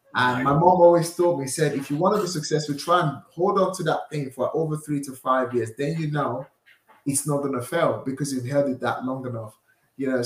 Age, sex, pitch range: 30-49, male, 125-150 Hz